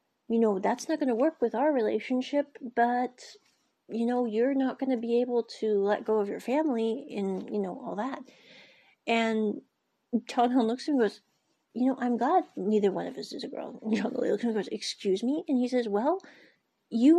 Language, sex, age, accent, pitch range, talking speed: English, female, 40-59, American, 210-280 Hz, 225 wpm